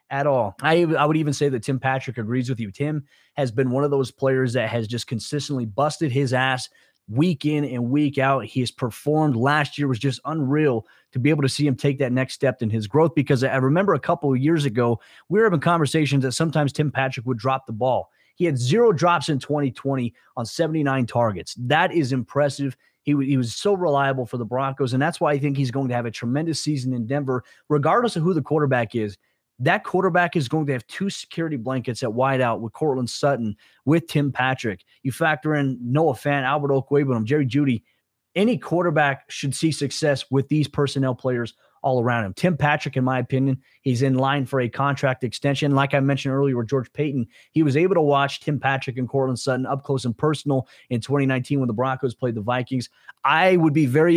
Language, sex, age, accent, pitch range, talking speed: English, male, 20-39, American, 125-145 Hz, 220 wpm